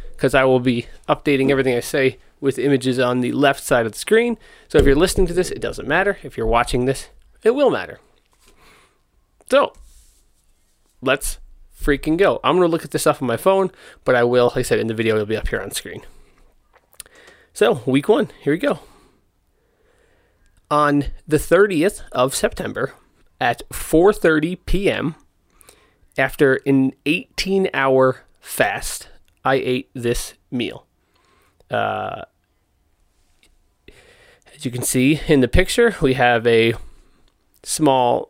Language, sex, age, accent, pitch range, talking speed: English, male, 30-49, American, 115-155 Hz, 150 wpm